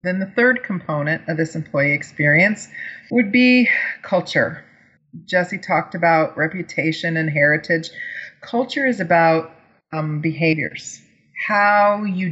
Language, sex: English, female